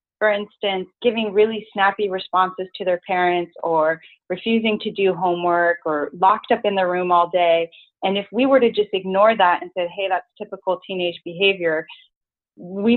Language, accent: English, American